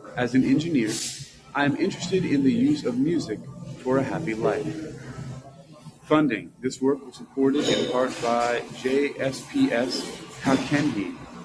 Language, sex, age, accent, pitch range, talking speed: English, male, 40-59, American, 125-150 Hz, 130 wpm